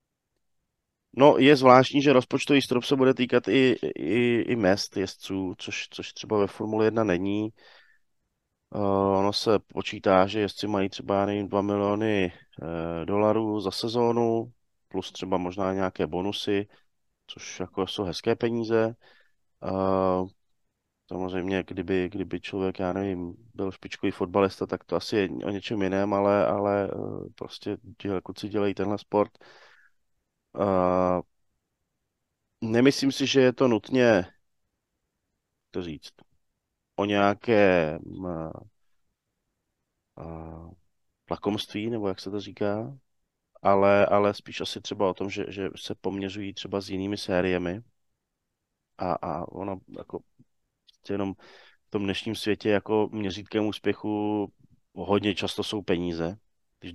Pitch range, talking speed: 95-105 Hz, 130 wpm